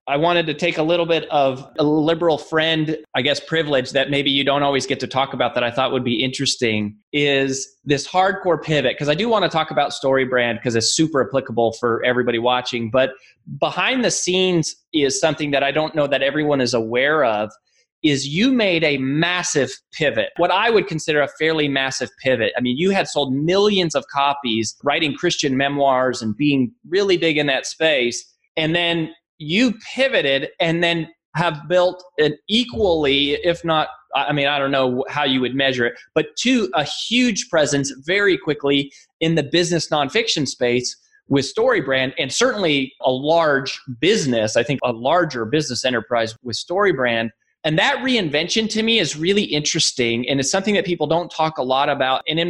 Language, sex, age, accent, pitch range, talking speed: English, male, 20-39, American, 135-170 Hz, 190 wpm